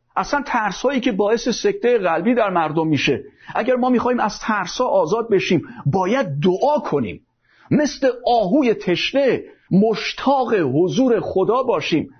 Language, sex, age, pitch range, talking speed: Persian, male, 50-69, 185-265 Hz, 140 wpm